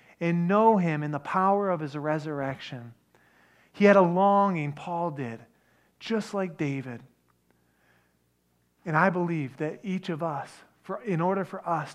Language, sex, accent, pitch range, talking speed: English, male, American, 110-180 Hz, 150 wpm